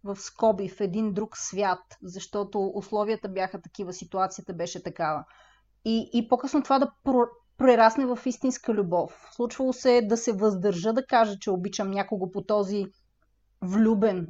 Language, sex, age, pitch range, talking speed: Bulgarian, female, 30-49, 190-235 Hz, 145 wpm